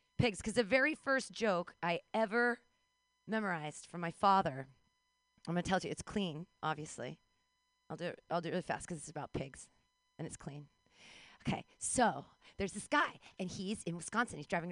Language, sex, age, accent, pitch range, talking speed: English, female, 30-49, American, 180-280 Hz, 190 wpm